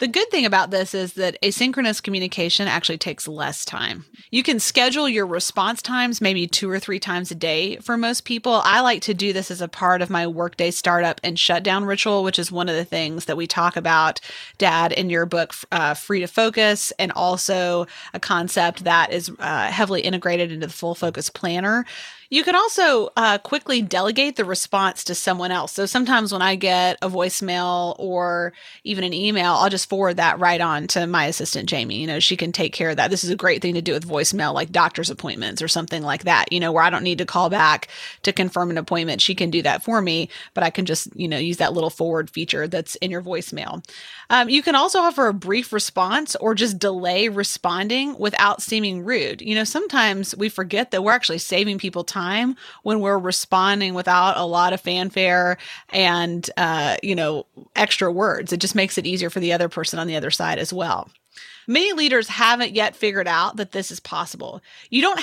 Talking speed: 215 wpm